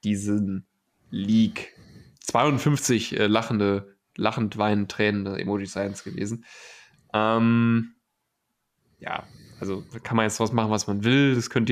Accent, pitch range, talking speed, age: German, 105-120 Hz, 125 wpm, 10-29